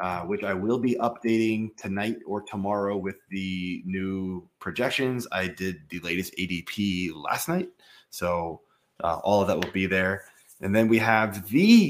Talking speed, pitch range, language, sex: 165 wpm, 95-115 Hz, English, male